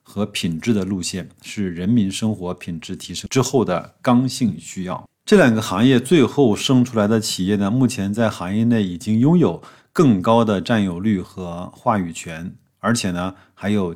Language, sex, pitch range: Chinese, male, 95-120 Hz